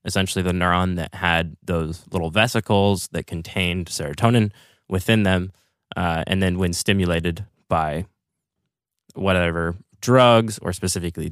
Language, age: English, 20-39